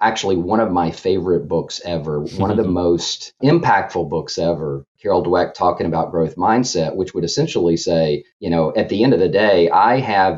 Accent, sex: American, male